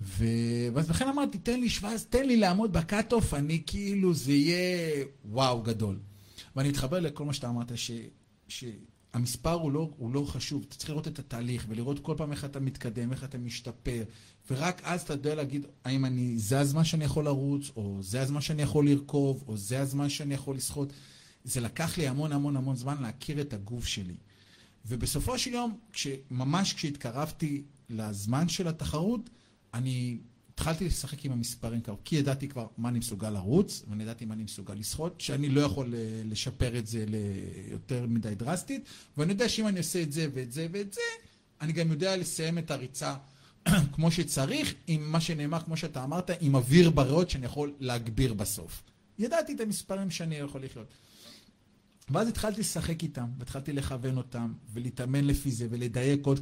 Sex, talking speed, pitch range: male, 180 wpm, 120-160 Hz